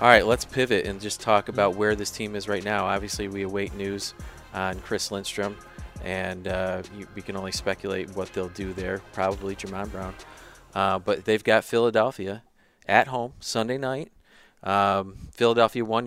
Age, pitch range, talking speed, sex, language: 30-49, 95-110 Hz, 170 wpm, male, English